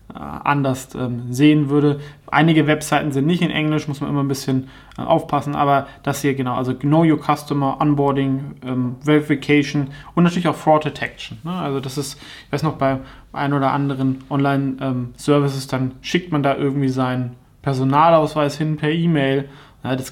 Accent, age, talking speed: German, 20-39, 155 wpm